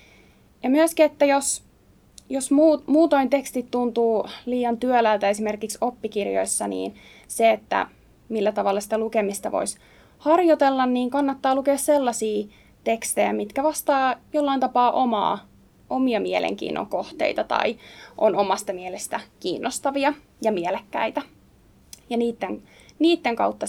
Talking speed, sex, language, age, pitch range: 115 wpm, female, Finnish, 20-39, 205-270 Hz